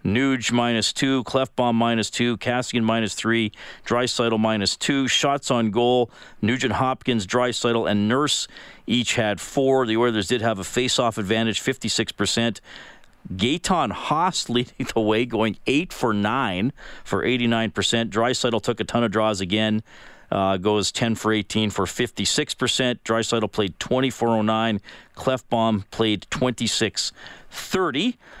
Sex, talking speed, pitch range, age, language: male, 135 wpm, 105-125 Hz, 40-59, English